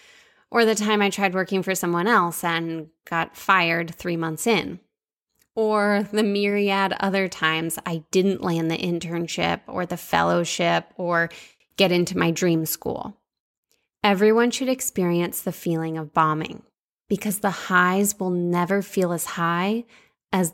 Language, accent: English, American